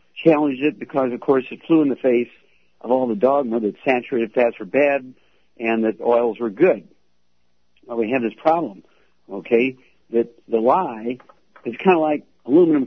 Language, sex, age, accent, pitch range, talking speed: English, male, 60-79, American, 110-135 Hz, 175 wpm